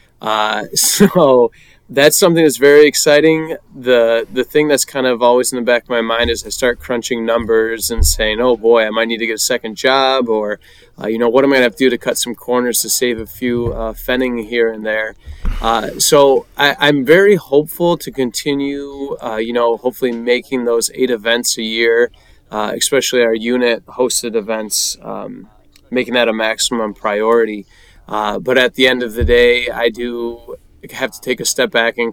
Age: 20-39